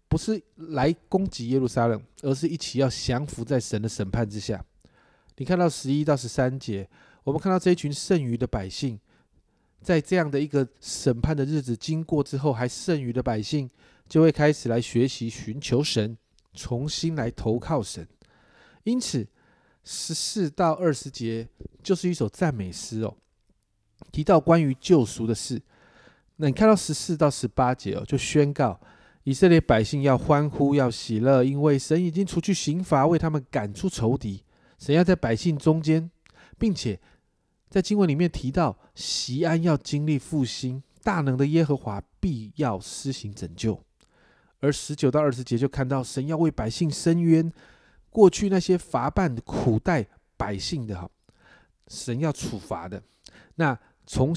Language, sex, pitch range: Chinese, male, 115-165 Hz